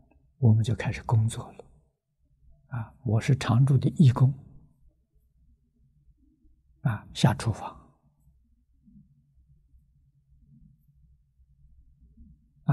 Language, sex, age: Chinese, male, 60-79